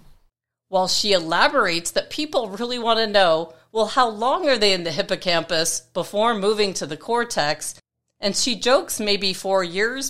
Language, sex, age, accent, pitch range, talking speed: English, female, 40-59, American, 175-235 Hz, 165 wpm